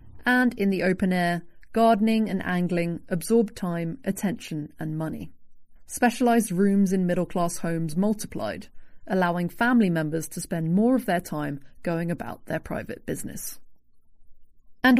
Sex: female